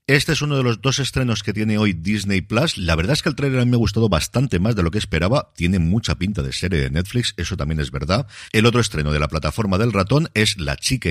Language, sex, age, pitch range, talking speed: Spanish, male, 50-69, 80-130 Hz, 265 wpm